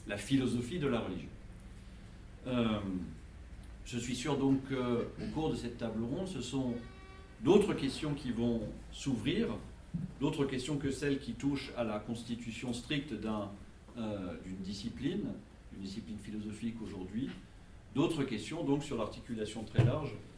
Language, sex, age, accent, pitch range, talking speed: French, male, 50-69, French, 95-120 Hz, 140 wpm